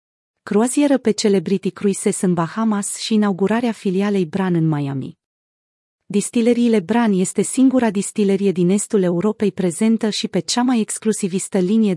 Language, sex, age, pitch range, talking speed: Romanian, female, 30-49, 180-220 Hz, 135 wpm